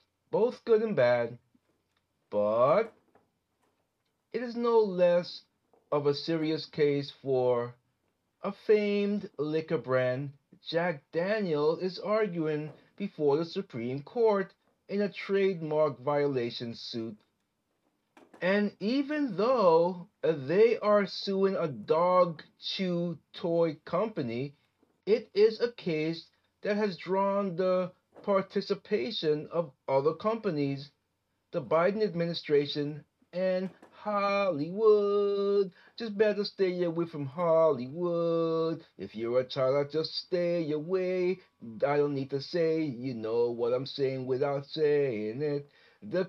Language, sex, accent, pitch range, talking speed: English, male, American, 145-200 Hz, 110 wpm